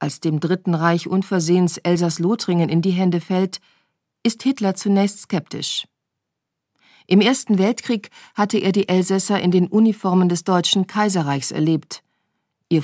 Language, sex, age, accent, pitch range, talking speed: German, female, 40-59, German, 160-195 Hz, 140 wpm